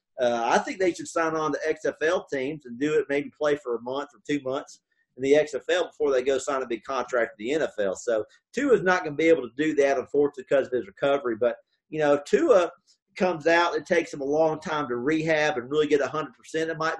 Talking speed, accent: 250 wpm, American